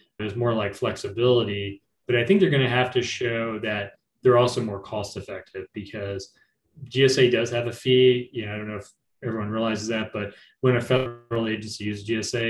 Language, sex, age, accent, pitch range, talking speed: English, male, 30-49, American, 110-130 Hz, 195 wpm